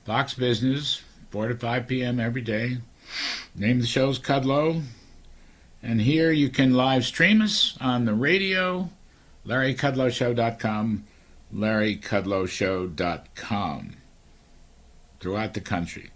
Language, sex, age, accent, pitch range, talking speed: English, male, 60-79, American, 100-130 Hz, 100 wpm